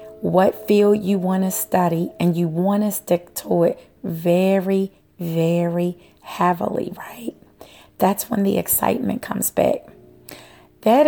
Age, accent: 30-49, American